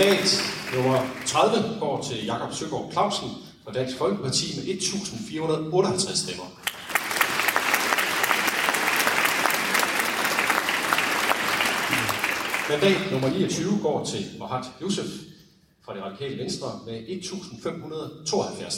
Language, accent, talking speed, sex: Danish, native, 85 wpm, male